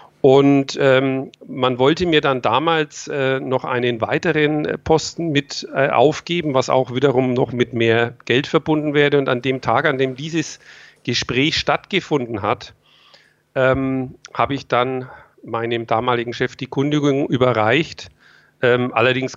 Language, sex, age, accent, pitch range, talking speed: German, male, 50-69, German, 125-140 Hz, 145 wpm